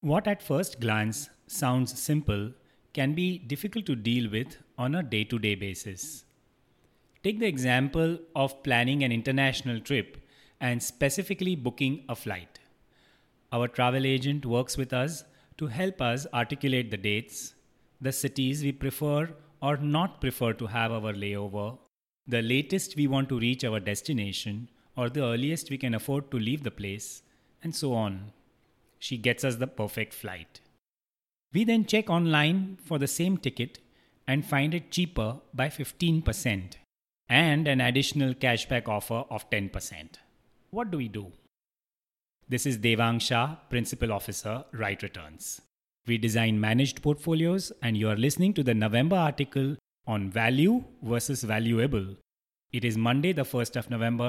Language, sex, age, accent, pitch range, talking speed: English, male, 30-49, Indian, 115-145 Hz, 150 wpm